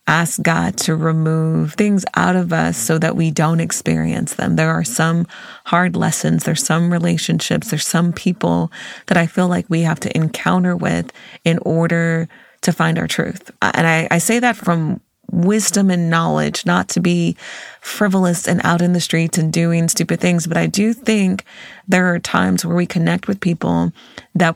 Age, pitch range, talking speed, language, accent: 30-49, 160-190 Hz, 185 wpm, English, American